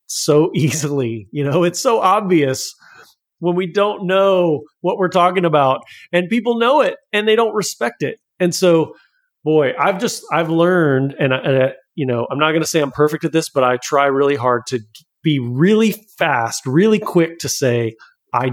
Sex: male